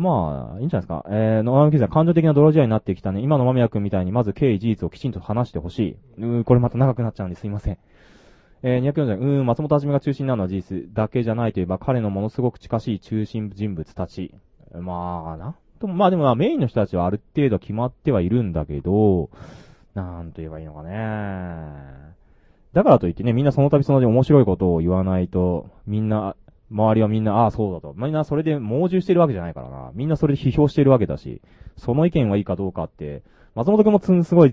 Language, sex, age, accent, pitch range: Japanese, male, 20-39, native, 90-130 Hz